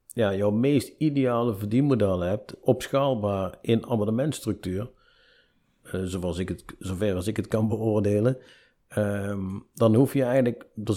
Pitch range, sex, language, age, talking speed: 100-120 Hz, male, Dutch, 50-69, 135 wpm